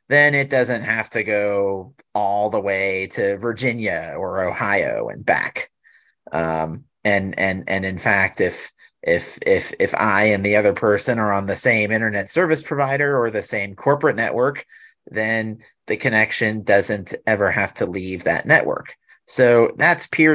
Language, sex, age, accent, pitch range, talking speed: English, male, 30-49, American, 100-125 Hz, 160 wpm